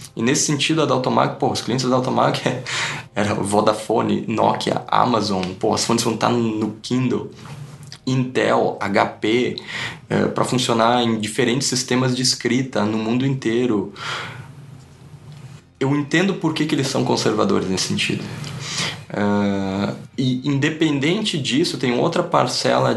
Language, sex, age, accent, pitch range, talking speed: Portuguese, male, 20-39, Brazilian, 120-155 Hz, 140 wpm